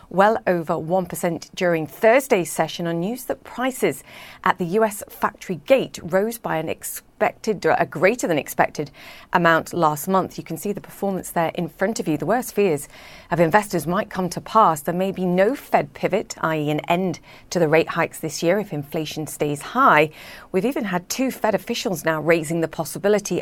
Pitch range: 160-195 Hz